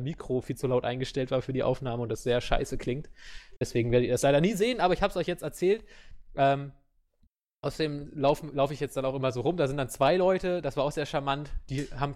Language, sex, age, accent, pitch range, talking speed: English, male, 20-39, German, 130-165 Hz, 255 wpm